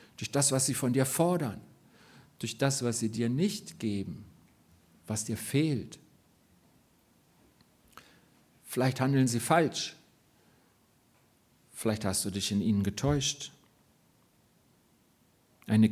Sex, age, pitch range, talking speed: male, 50-69, 110-155 Hz, 110 wpm